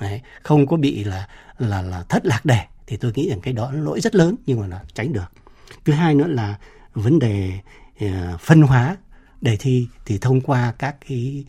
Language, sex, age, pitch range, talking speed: Vietnamese, male, 60-79, 100-130 Hz, 210 wpm